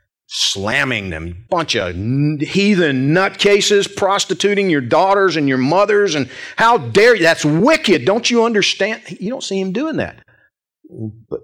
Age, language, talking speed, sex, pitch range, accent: 40-59, English, 145 wpm, male, 110-185 Hz, American